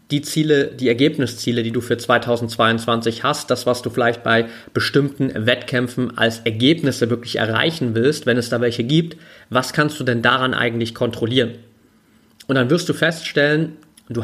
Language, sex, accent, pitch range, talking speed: German, male, German, 120-155 Hz, 165 wpm